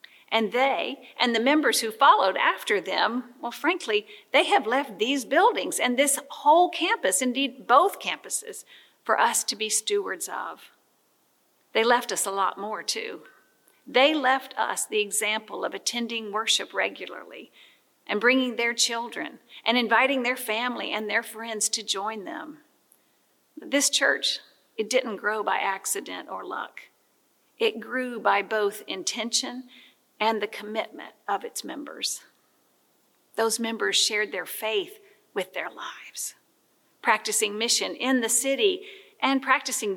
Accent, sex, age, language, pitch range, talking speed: American, female, 50-69, English, 215-305 Hz, 140 wpm